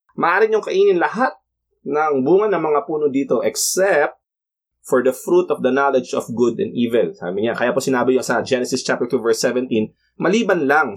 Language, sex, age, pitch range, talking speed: Filipino, male, 20-39, 120-180 Hz, 180 wpm